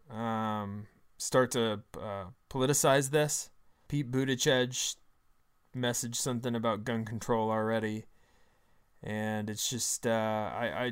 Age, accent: 20-39, American